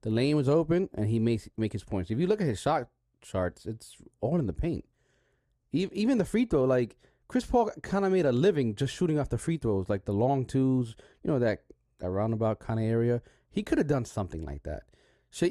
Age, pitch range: 30-49, 105-170 Hz